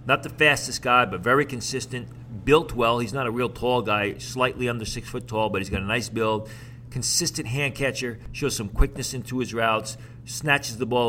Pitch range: 115-130 Hz